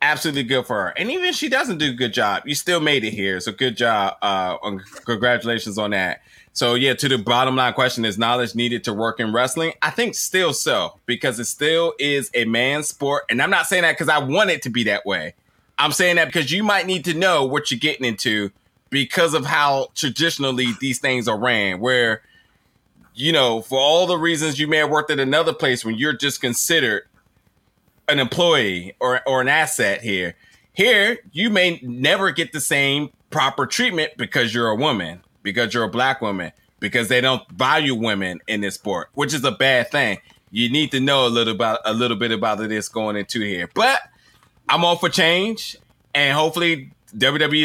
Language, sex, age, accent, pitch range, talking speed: English, male, 20-39, American, 115-155 Hz, 205 wpm